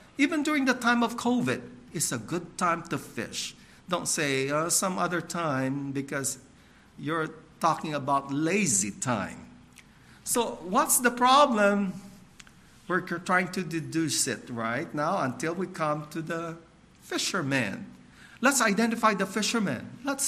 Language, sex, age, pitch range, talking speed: English, male, 50-69, 150-240 Hz, 135 wpm